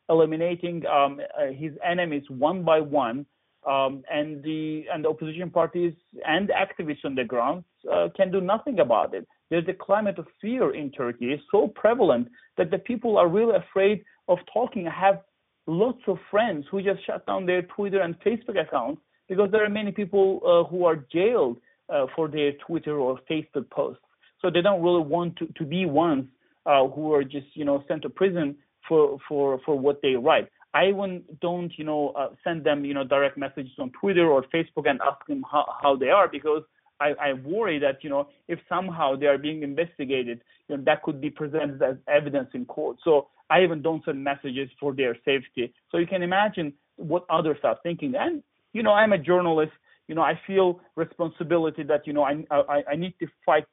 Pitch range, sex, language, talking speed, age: 145-180 Hz, male, English, 200 wpm, 40-59